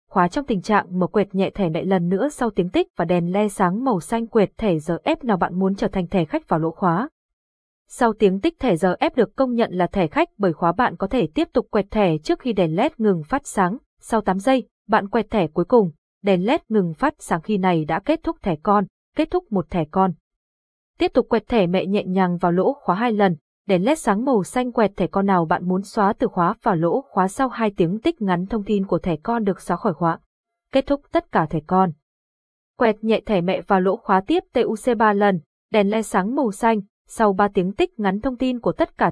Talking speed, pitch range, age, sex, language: 250 wpm, 180-230 Hz, 20-39, female, Vietnamese